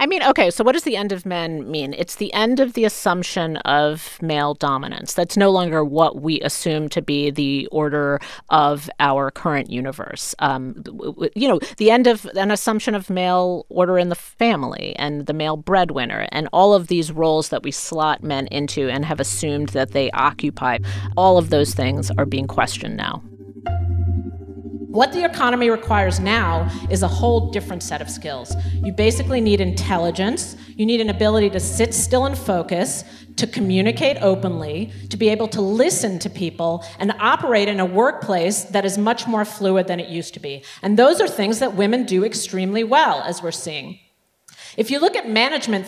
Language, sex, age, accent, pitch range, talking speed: English, female, 40-59, American, 145-220 Hz, 185 wpm